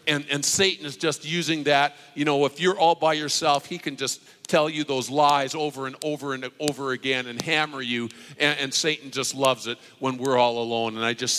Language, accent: English, American